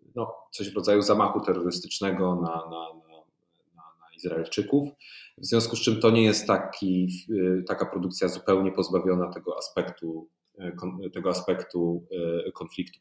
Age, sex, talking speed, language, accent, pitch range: 30-49, male, 135 wpm, English, Polish, 85-100 Hz